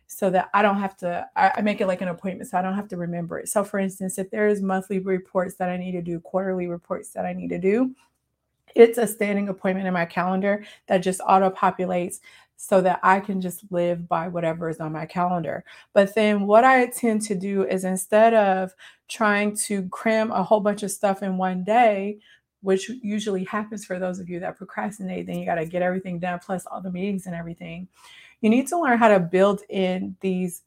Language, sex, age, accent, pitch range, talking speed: English, female, 30-49, American, 180-210 Hz, 220 wpm